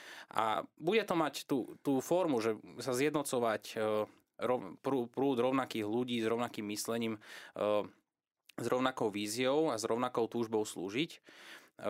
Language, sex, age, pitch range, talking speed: Slovak, male, 20-39, 110-120 Hz, 145 wpm